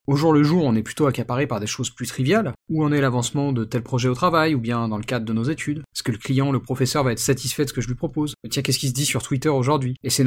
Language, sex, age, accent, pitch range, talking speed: French, male, 40-59, French, 125-155 Hz, 325 wpm